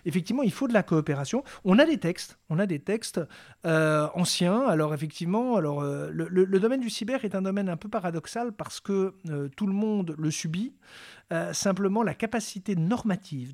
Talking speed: 200 wpm